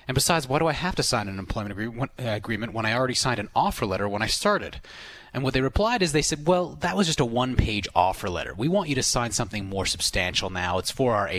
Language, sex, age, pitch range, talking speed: English, male, 30-49, 100-135 Hz, 255 wpm